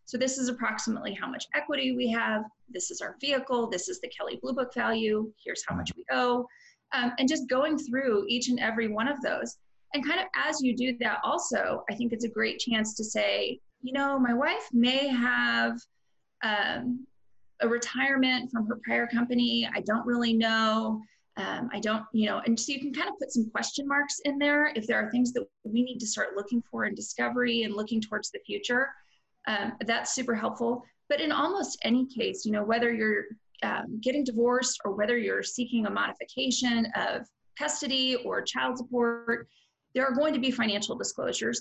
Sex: female